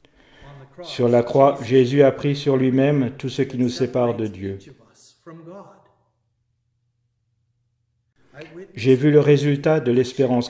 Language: French